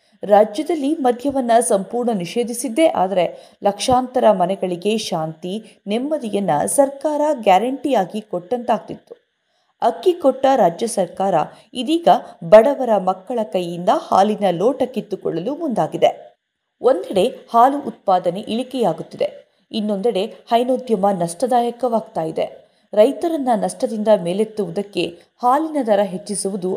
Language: Kannada